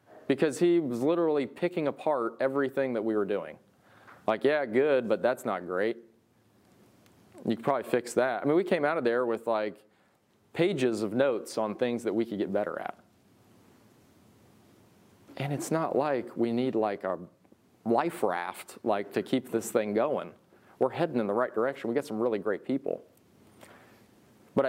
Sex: male